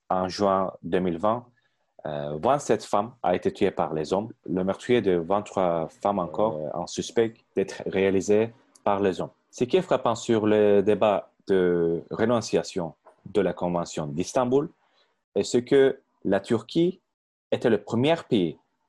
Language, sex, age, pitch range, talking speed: Turkish, male, 30-49, 95-115 Hz, 155 wpm